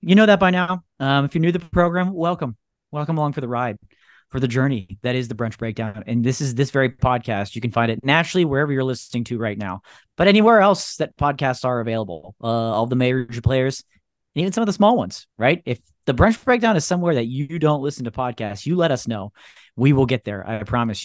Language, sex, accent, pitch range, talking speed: English, male, American, 115-140 Hz, 240 wpm